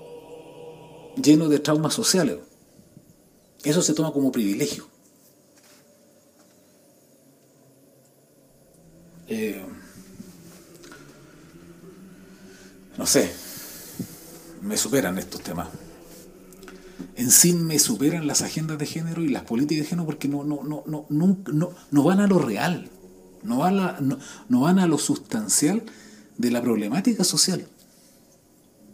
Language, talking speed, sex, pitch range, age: Spanish, 115 wpm, male, 135-180 Hz, 40-59